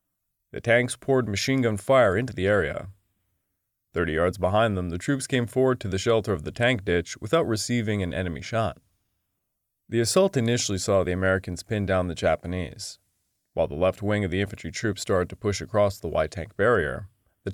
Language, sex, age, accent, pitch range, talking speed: English, male, 20-39, American, 95-120 Hz, 185 wpm